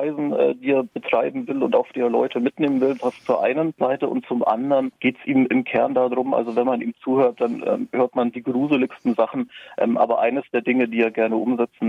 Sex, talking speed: male, 220 wpm